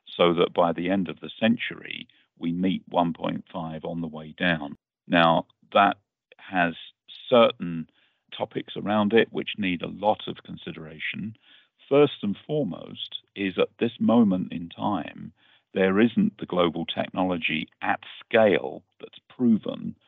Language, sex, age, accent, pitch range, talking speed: English, male, 50-69, British, 85-105 Hz, 135 wpm